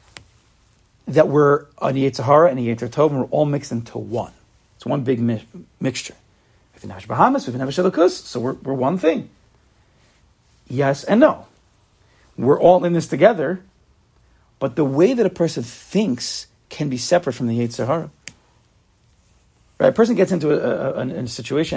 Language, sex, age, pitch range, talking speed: English, male, 40-59, 115-160 Hz, 180 wpm